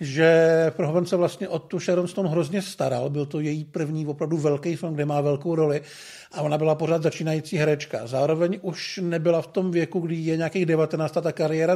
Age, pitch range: 50-69, 160-185 Hz